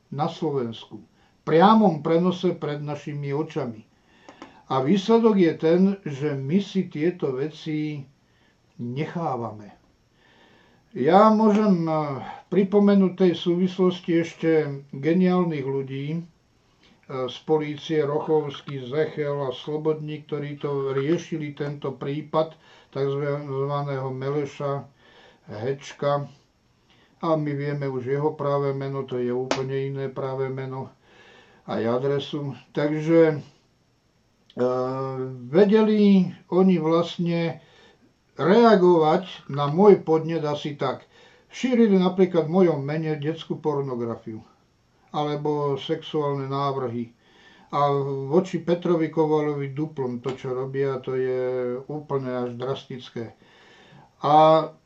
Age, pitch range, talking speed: 50-69, 135-165 Hz, 95 wpm